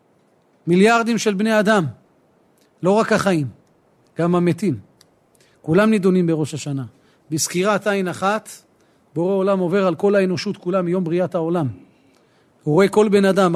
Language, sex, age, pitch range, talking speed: Hebrew, male, 40-59, 175-210 Hz, 135 wpm